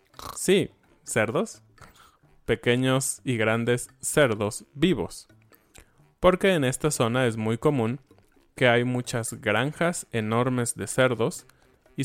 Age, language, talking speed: 20-39, Spanish, 110 wpm